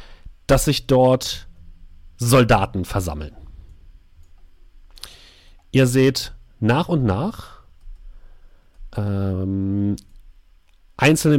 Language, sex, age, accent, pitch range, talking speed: German, male, 40-59, German, 95-140 Hz, 65 wpm